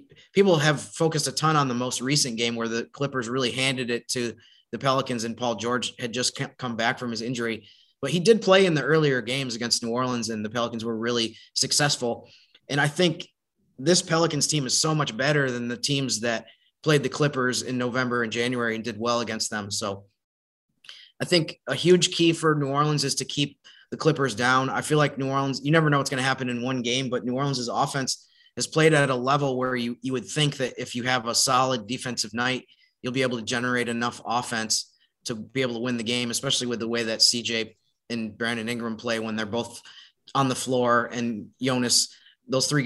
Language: English